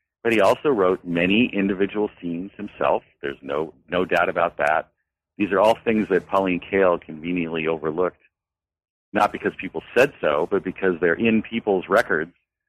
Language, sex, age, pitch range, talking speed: English, male, 50-69, 80-100 Hz, 160 wpm